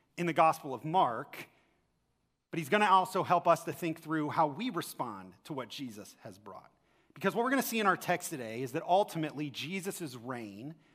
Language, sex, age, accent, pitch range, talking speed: English, male, 40-59, American, 155-210 Hz, 210 wpm